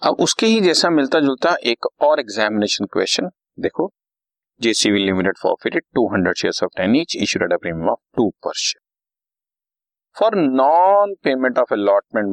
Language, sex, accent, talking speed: Hindi, male, native, 70 wpm